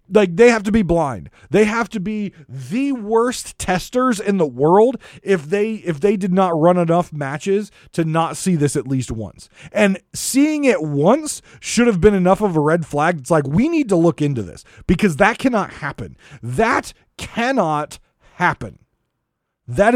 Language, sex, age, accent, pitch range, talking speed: English, male, 30-49, American, 150-220 Hz, 180 wpm